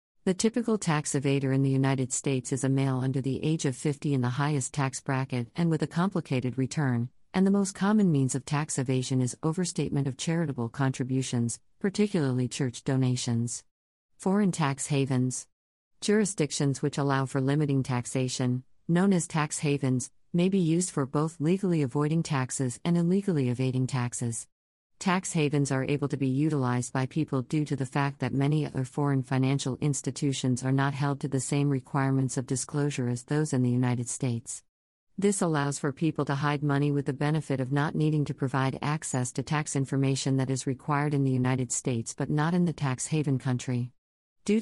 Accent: American